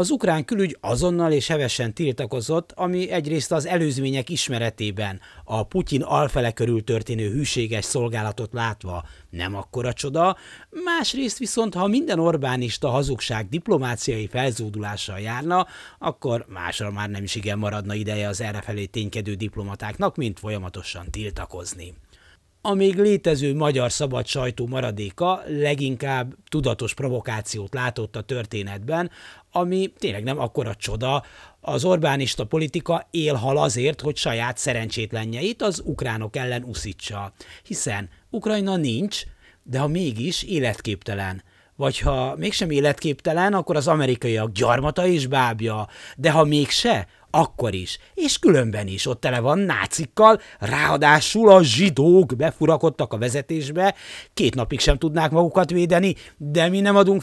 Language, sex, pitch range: Hungarian, male, 110-165 Hz